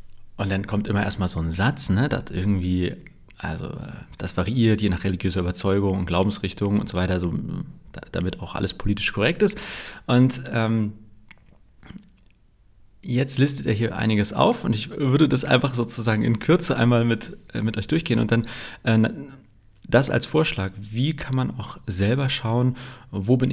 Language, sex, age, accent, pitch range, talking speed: German, male, 30-49, German, 100-125 Hz, 165 wpm